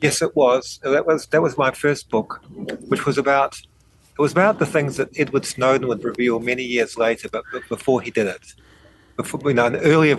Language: English